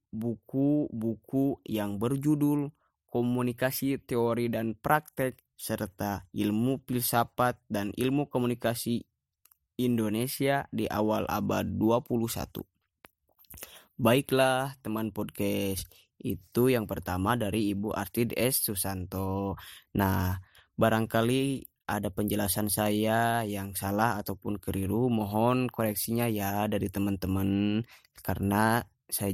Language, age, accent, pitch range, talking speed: Indonesian, 20-39, native, 100-125 Hz, 90 wpm